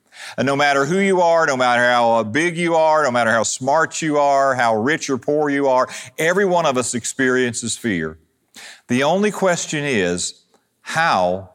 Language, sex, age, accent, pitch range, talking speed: English, male, 50-69, American, 110-145 Hz, 180 wpm